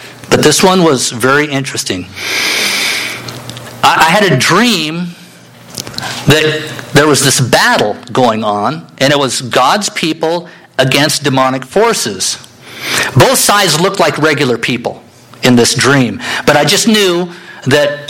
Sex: male